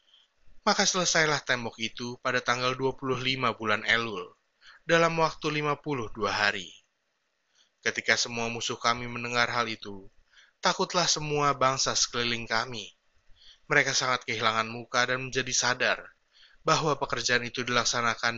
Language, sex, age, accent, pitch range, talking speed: Indonesian, male, 20-39, native, 115-140 Hz, 120 wpm